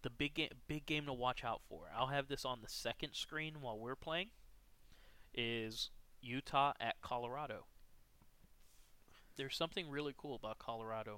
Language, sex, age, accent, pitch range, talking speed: English, male, 20-39, American, 100-135 Hz, 155 wpm